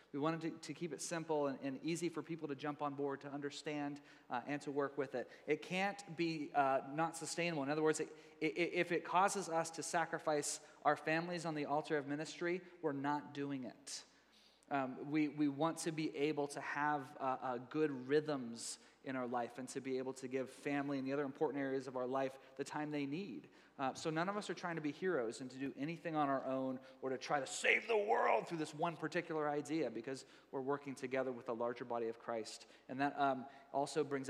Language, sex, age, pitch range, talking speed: English, male, 30-49, 135-160 Hz, 225 wpm